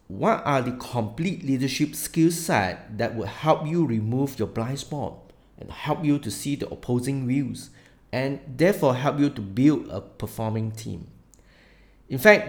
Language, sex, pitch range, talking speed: English, male, 110-150 Hz, 165 wpm